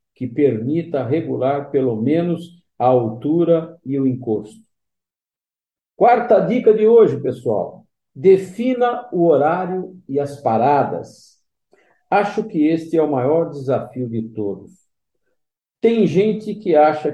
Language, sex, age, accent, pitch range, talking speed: Portuguese, male, 50-69, Brazilian, 130-180 Hz, 120 wpm